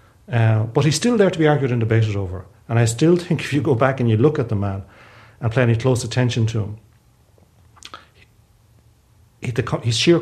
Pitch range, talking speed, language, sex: 105-120 Hz, 200 wpm, English, male